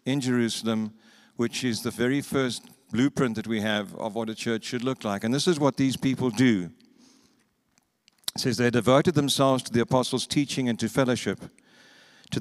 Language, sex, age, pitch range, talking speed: English, male, 60-79, 110-130 Hz, 180 wpm